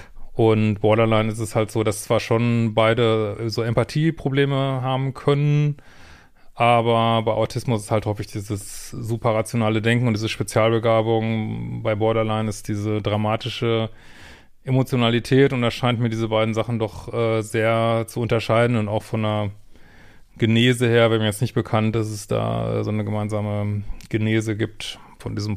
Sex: male